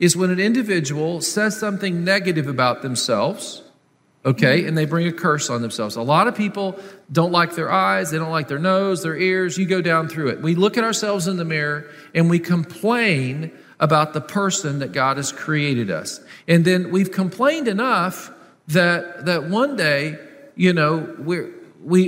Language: English